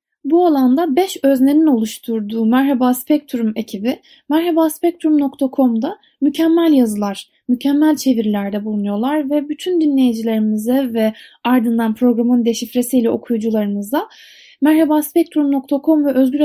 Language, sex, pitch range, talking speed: Turkish, female, 225-310 Hz, 90 wpm